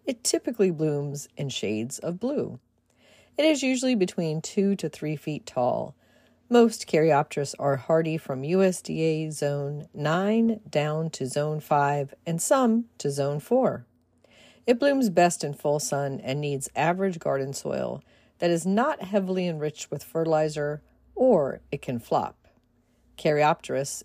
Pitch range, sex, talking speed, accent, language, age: 145-195 Hz, female, 140 wpm, American, English, 40-59